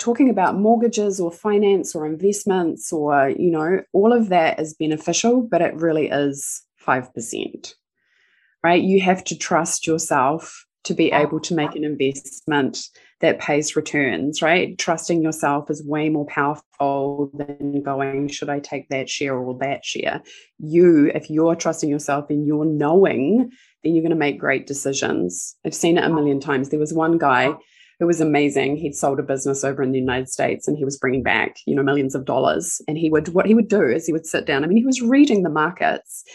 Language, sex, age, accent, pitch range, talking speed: English, female, 20-39, Australian, 140-185 Hz, 200 wpm